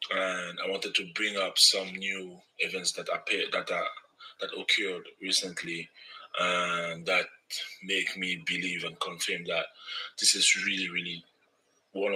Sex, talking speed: male, 145 wpm